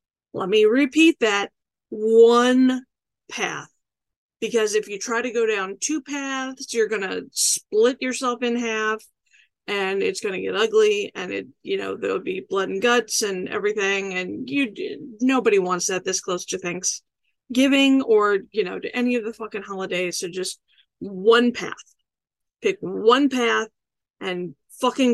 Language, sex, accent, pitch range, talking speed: English, female, American, 215-280 Hz, 160 wpm